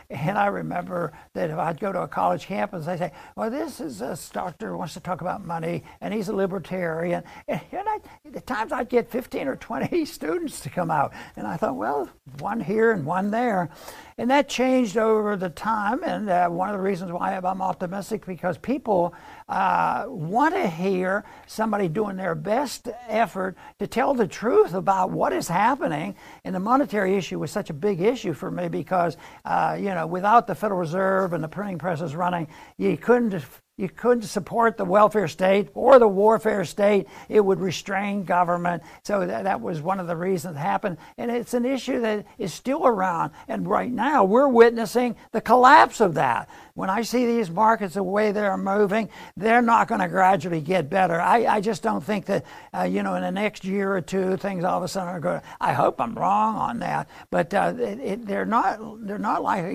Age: 60-79